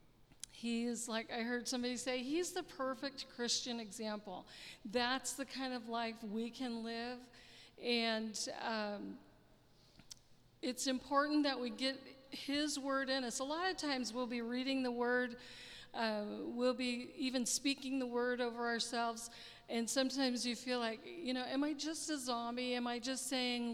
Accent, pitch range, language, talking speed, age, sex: American, 235-275 Hz, English, 160 wpm, 50-69, female